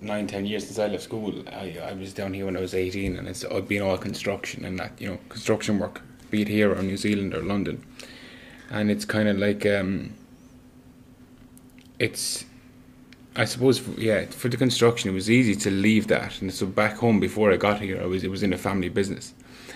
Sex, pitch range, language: male, 95-120 Hz, English